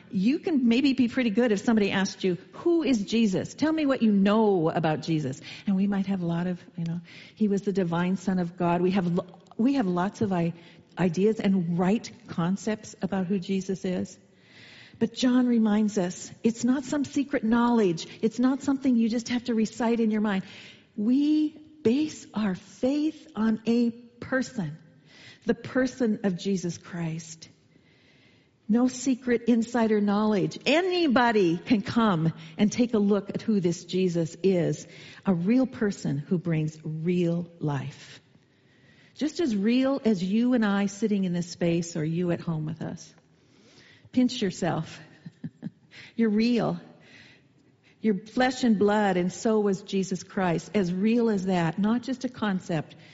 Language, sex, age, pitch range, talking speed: English, female, 40-59, 175-235 Hz, 160 wpm